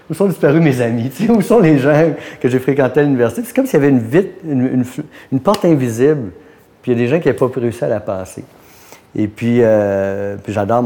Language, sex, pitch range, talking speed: French, male, 105-140 Hz, 250 wpm